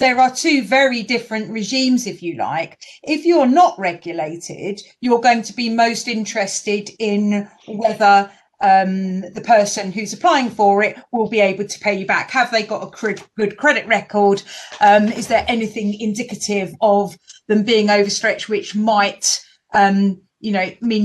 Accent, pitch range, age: British, 195-245 Hz, 40-59